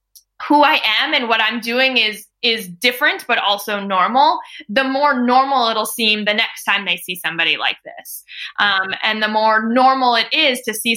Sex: female